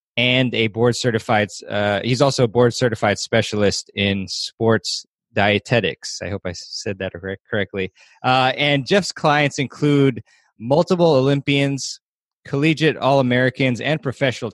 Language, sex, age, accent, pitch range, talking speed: English, male, 20-39, American, 110-135 Hz, 130 wpm